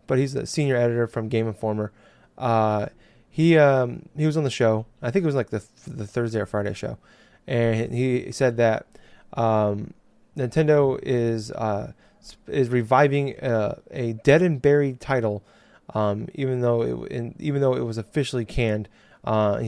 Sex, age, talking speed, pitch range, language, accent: male, 20-39, 170 wpm, 115-140 Hz, English, American